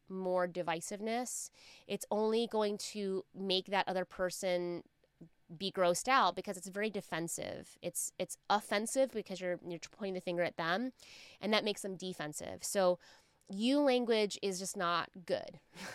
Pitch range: 175-205 Hz